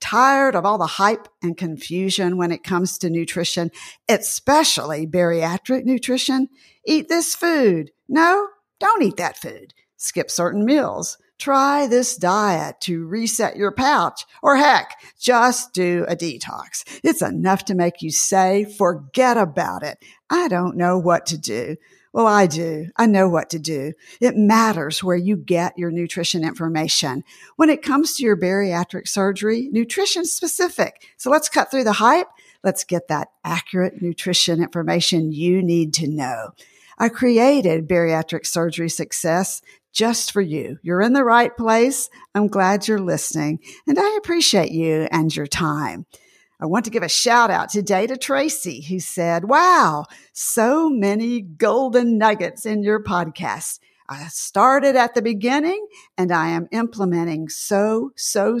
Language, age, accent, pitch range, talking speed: English, 50-69, American, 170-250 Hz, 155 wpm